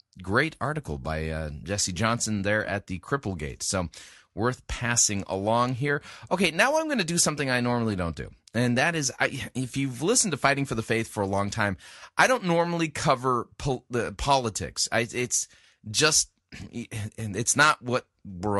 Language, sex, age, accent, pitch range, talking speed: English, male, 30-49, American, 100-130 Hz, 185 wpm